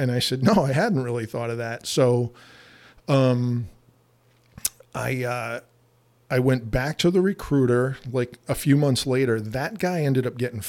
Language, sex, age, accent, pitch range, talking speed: English, male, 40-59, American, 115-130 Hz, 170 wpm